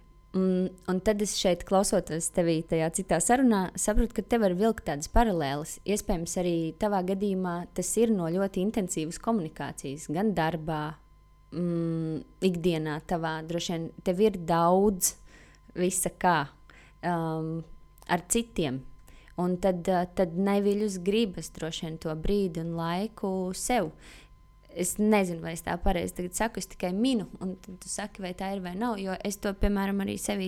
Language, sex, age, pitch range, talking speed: English, female, 20-39, 170-210 Hz, 155 wpm